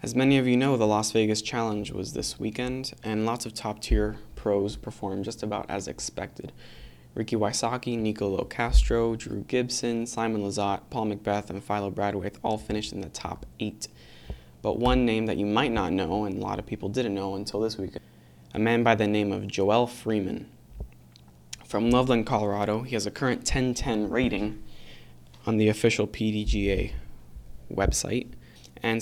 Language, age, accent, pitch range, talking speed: English, 20-39, American, 95-115 Hz, 170 wpm